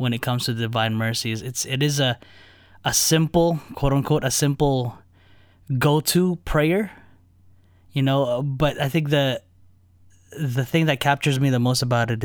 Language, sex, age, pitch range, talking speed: English, male, 20-39, 105-150 Hz, 165 wpm